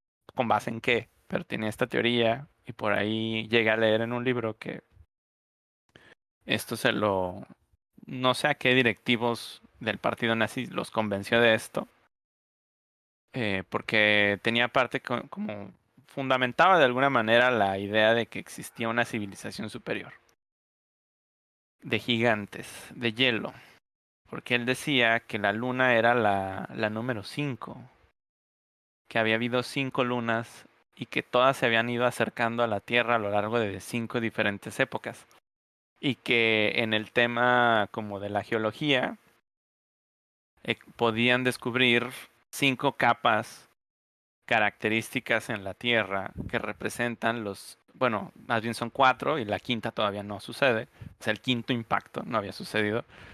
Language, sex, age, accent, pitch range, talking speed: Spanish, male, 30-49, Mexican, 105-125 Hz, 140 wpm